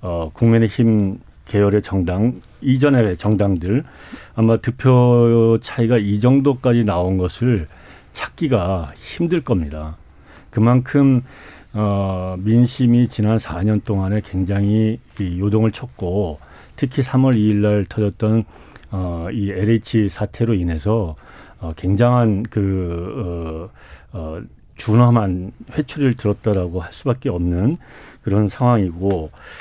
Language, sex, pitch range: Korean, male, 95-120 Hz